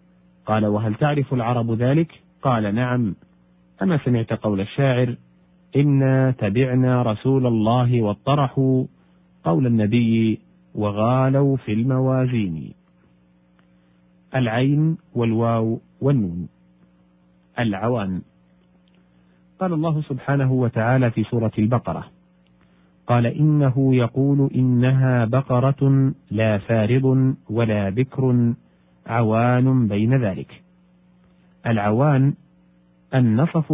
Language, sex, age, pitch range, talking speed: Arabic, male, 40-59, 100-135 Hz, 80 wpm